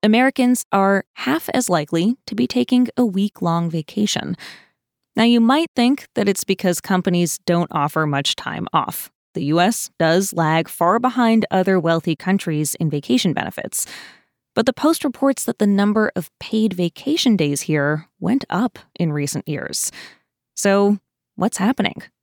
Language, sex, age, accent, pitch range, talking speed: English, female, 20-39, American, 165-220 Hz, 150 wpm